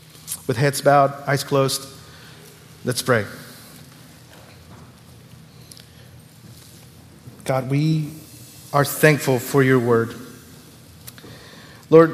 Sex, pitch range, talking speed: male, 125-150 Hz, 75 wpm